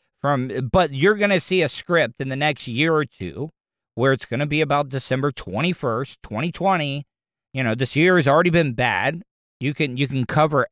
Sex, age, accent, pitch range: male, 50-69, American, 130-170 Hz